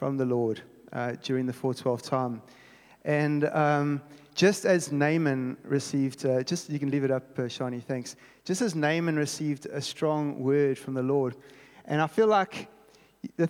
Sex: male